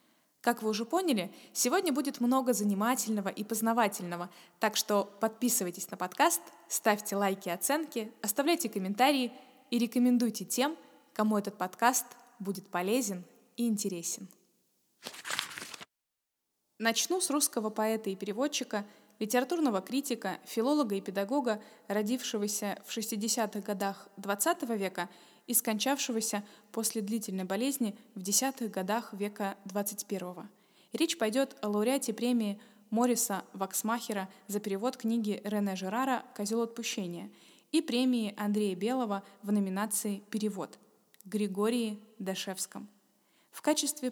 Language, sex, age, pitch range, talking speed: Russian, female, 20-39, 200-245 Hz, 110 wpm